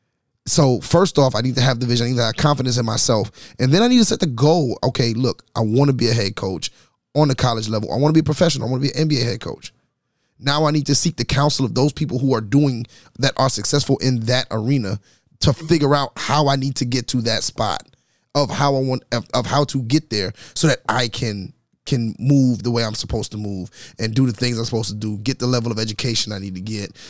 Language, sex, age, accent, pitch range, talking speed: English, male, 30-49, American, 110-135 Hz, 265 wpm